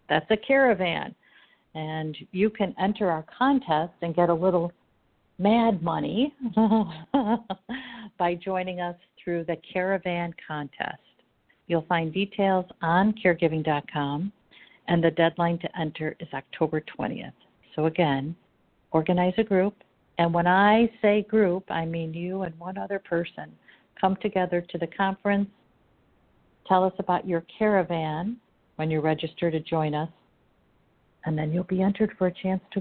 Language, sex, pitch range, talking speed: English, female, 160-195 Hz, 140 wpm